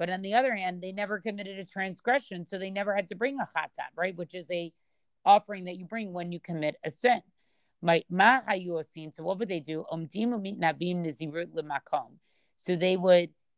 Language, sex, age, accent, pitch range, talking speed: English, female, 40-59, American, 165-200 Hz, 170 wpm